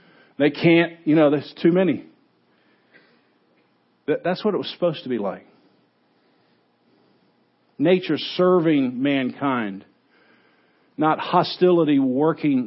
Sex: male